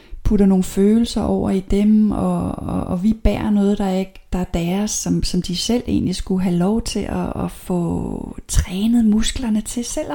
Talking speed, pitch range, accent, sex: 195 wpm, 185-225 Hz, native, female